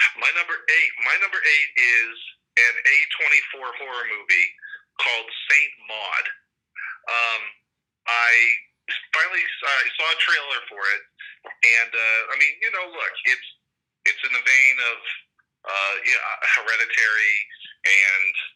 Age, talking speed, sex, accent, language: 40-59, 140 wpm, male, American, English